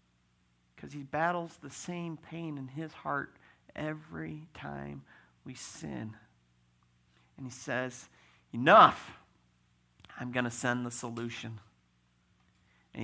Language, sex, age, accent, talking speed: English, male, 50-69, American, 110 wpm